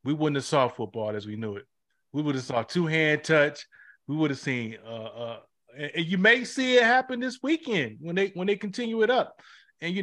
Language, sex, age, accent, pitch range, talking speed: English, male, 30-49, American, 130-165 Hz, 235 wpm